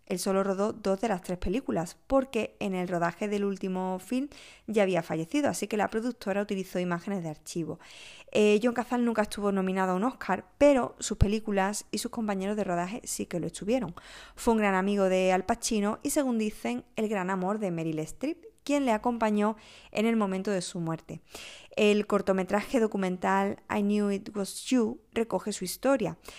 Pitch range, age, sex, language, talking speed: 185-230 Hz, 20-39, female, Spanish, 190 wpm